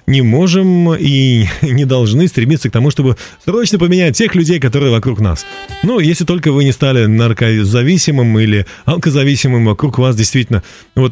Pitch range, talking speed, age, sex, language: 100-145 Hz, 155 wpm, 30-49, male, Russian